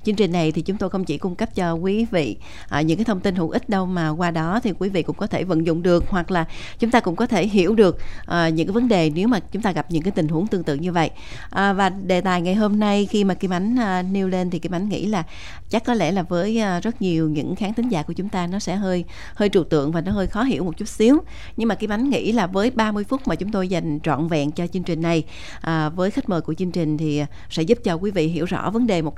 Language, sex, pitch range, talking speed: Vietnamese, female, 170-210 Hz, 285 wpm